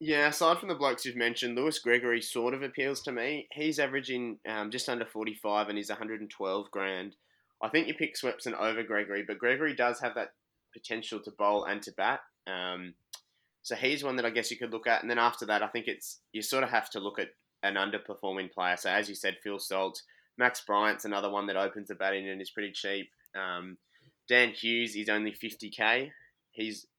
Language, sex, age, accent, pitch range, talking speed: English, male, 20-39, Australian, 95-115 Hz, 220 wpm